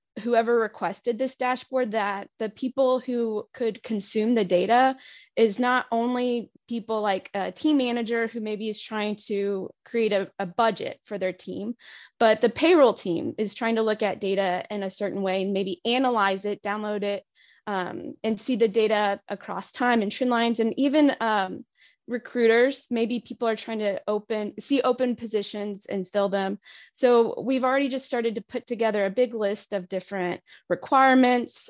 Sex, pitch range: female, 195-235 Hz